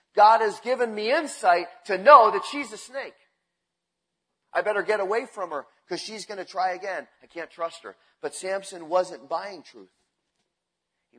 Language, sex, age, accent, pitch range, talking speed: English, male, 30-49, American, 140-185 Hz, 175 wpm